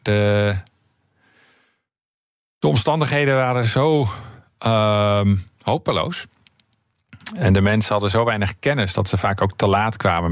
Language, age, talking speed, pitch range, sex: Dutch, 40-59, 120 wpm, 95-115 Hz, male